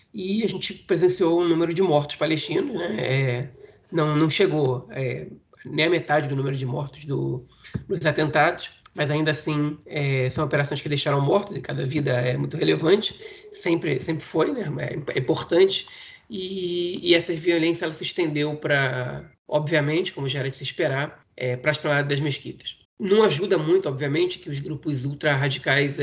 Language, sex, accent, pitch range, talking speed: Portuguese, male, Brazilian, 140-170 Hz, 180 wpm